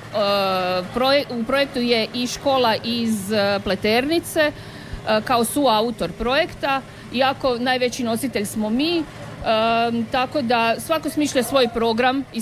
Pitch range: 215-260 Hz